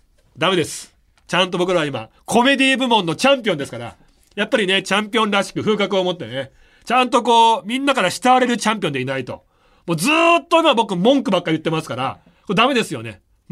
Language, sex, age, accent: Japanese, male, 40-59, native